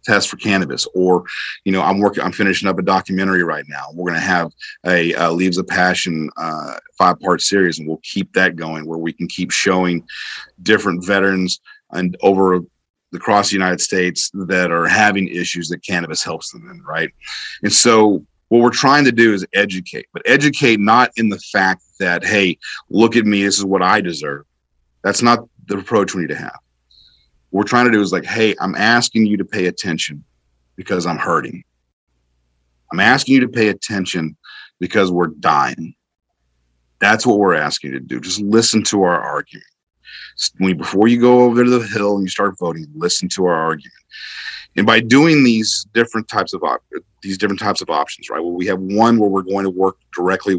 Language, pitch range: English, 85-110 Hz